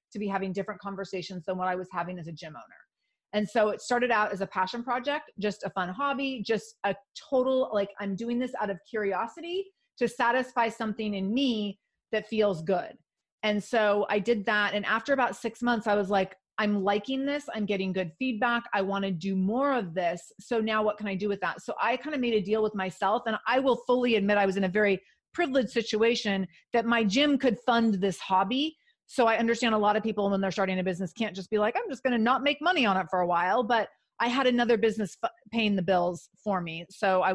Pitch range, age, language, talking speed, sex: 190-235 Hz, 30-49, English, 235 wpm, female